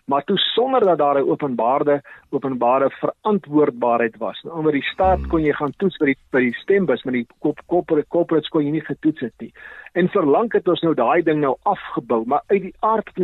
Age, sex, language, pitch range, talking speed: 50-69, male, Swedish, 140-190 Hz, 220 wpm